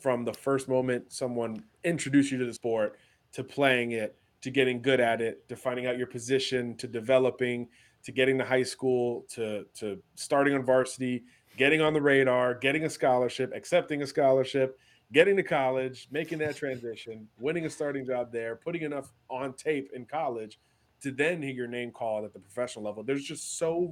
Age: 30-49